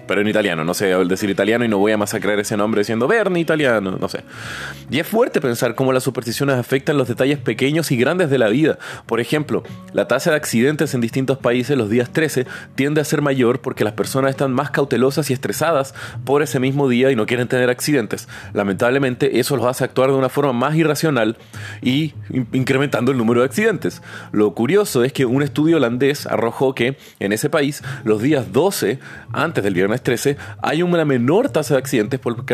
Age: 30-49